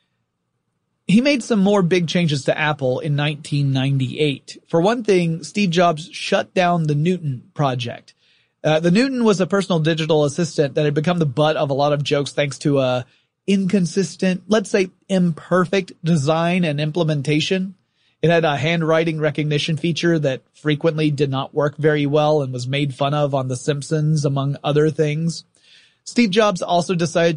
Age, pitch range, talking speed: 30-49, 140-170 Hz, 165 wpm